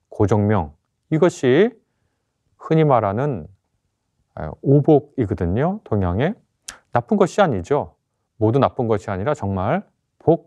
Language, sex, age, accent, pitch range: Korean, male, 30-49, native, 105-145 Hz